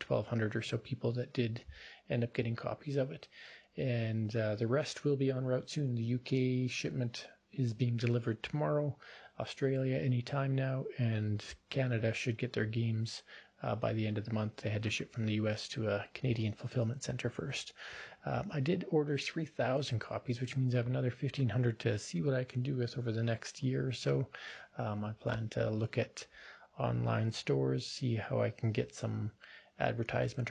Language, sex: English, male